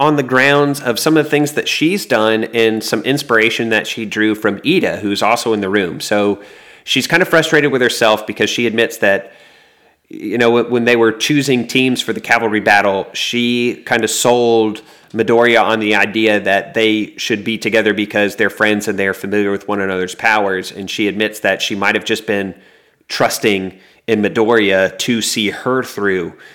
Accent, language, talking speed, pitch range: American, English, 190 wpm, 100-120 Hz